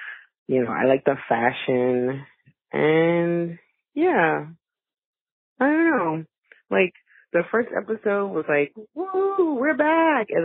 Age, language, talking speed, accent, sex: 20-39, English, 120 wpm, American, female